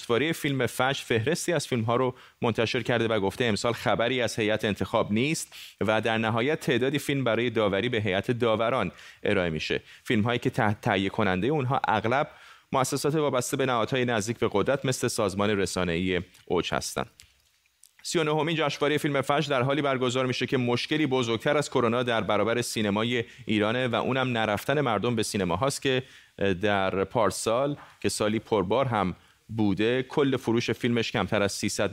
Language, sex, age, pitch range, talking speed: Persian, male, 30-49, 110-135 Hz, 170 wpm